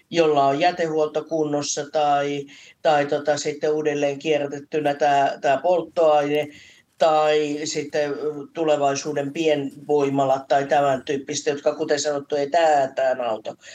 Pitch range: 145-175 Hz